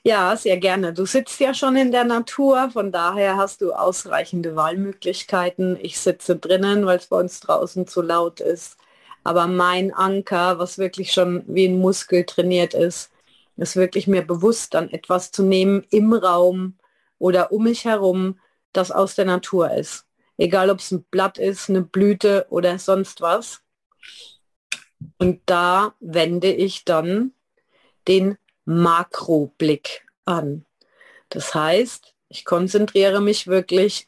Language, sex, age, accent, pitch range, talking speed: German, female, 40-59, German, 175-200 Hz, 145 wpm